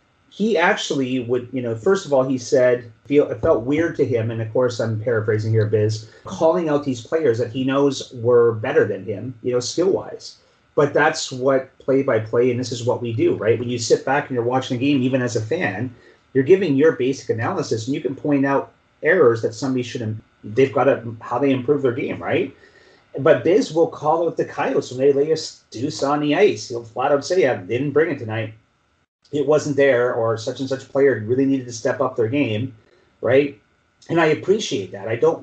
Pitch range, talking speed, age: 120-150 Hz, 220 wpm, 30-49